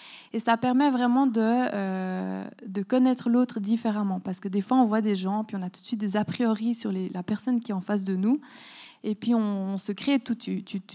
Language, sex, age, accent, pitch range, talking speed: French, female, 20-39, French, 195-250 Hz, 245 wpm